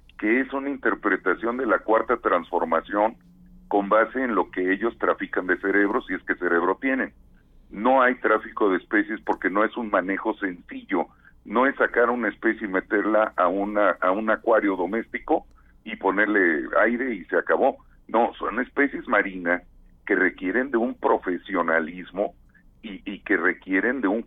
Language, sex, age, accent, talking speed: Spanish, male, 50-69, Mexican, 165 wpm